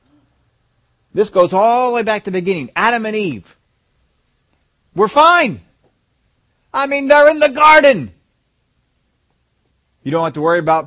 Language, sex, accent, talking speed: English, male, American, 145 wpm